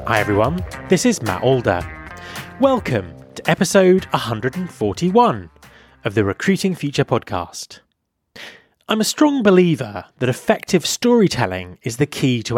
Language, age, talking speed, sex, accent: English, 30-49, 125 wpm, male, British